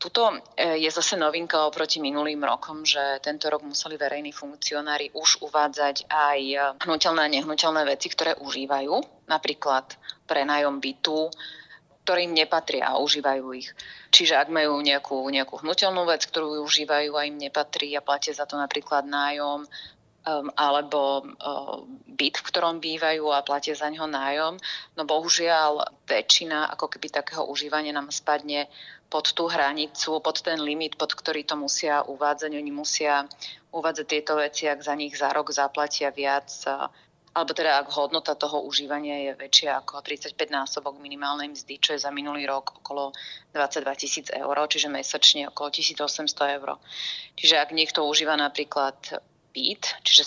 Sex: female